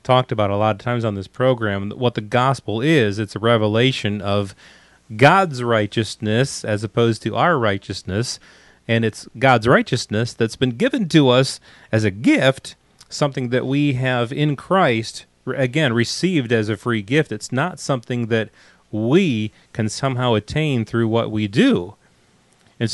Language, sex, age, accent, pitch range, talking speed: English, male, 30-49, American, 105-140 Hz, 160 wpm